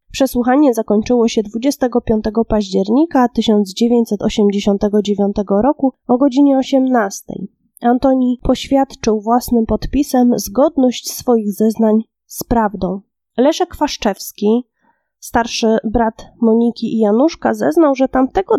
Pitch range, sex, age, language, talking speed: 220-265 Hz, female, 20-39, Polish, 95 wpm